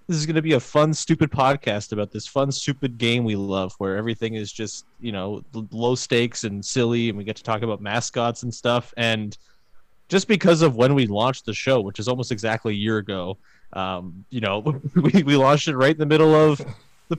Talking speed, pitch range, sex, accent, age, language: 225 wpm, 105-135 Hz, male, American, 20-39, English